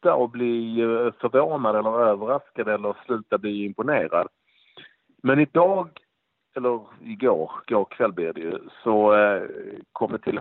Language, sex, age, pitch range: Swedish, male, 50-69, 105-140 Hz